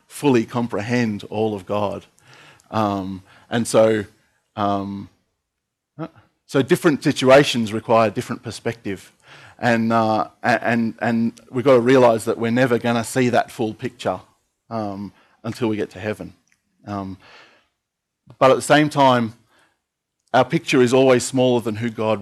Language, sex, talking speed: English, male, 140 wpm